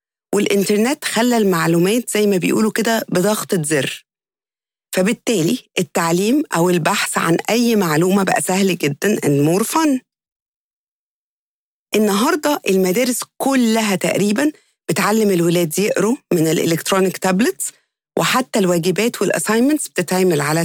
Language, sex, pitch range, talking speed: English, female, 175-225 Hz, 100 wpm